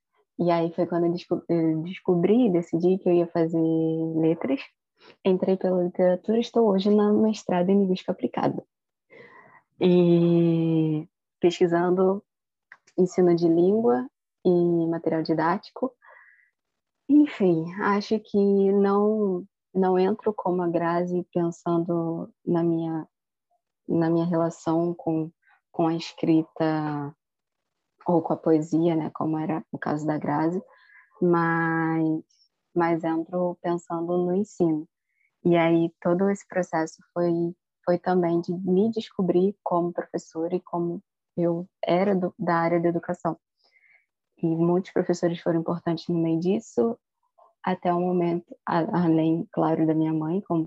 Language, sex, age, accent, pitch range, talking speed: Portuguese, female, 20-39, Brazilian, 165-190 Hz, 130 wpm